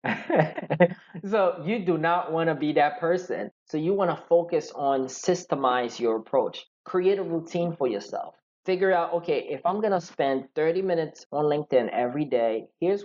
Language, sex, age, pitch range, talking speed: English, male, 20-39, 140-180 Hz, 160 wpm